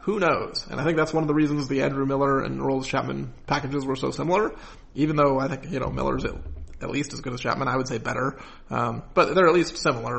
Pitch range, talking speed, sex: 130-150 Hz, 245 wpm, male